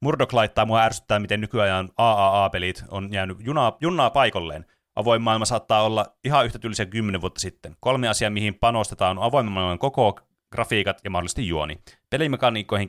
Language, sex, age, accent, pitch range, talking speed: Finnish, male, 30-49, native, 95-115 Hz, 155 wpm